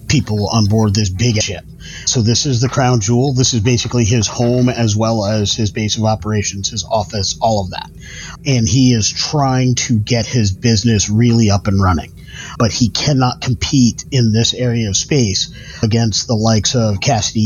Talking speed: 190 wpm